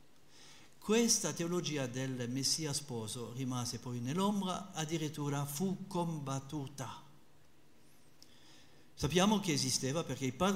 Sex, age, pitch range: male, 50-69, 125-165 Hz